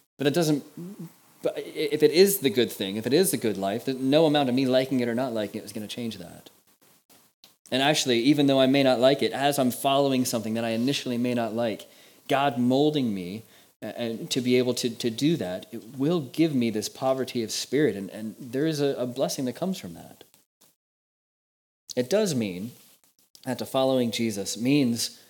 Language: English